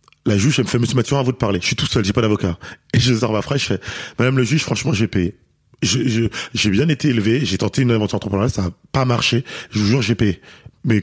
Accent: French